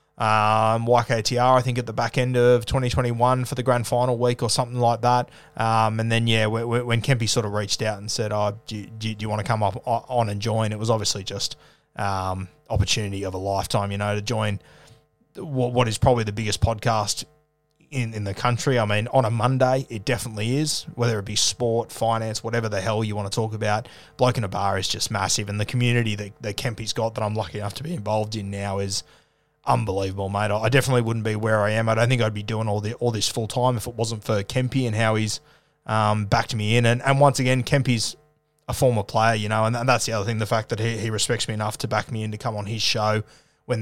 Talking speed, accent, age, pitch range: 250 wpm, Australian, 20-39, 105-125 Hz